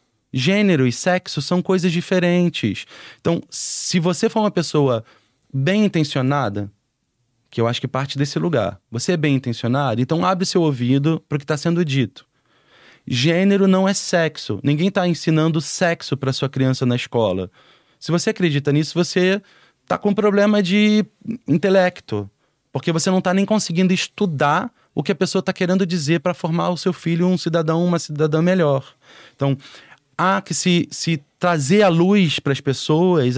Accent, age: Brazilian, 20-39